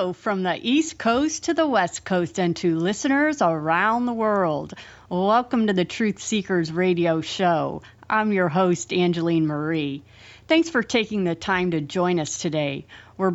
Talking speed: 160 wpm